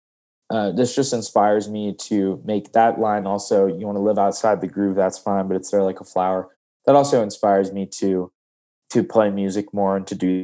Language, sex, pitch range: English, male, 90-105 Hz